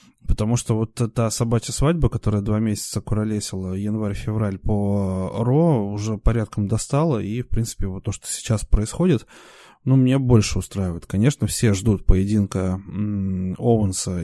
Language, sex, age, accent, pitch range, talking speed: Russian, male, 20-39, native, 100-115 Hz, 140 wpm